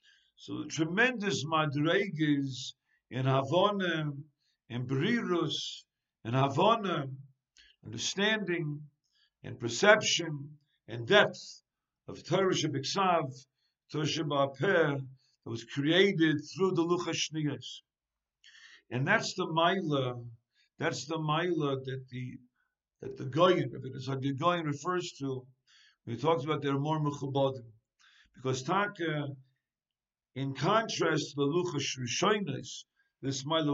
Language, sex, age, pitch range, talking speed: English, male, 50-69, 130-170 Hz, 105 wpm